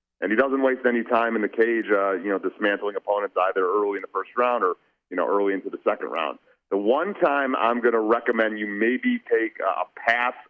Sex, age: male, 40-59